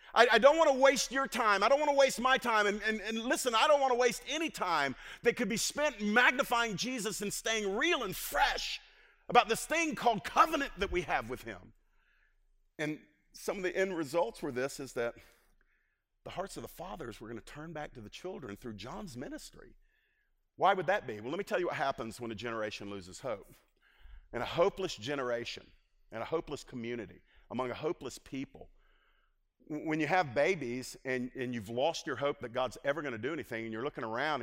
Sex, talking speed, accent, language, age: male, 210 wpm, American, English, 50-69